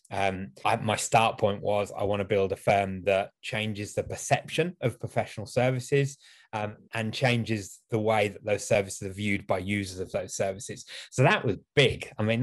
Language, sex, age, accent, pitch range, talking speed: English, male, 20-39, British, 100-115 Hz, 195 wpm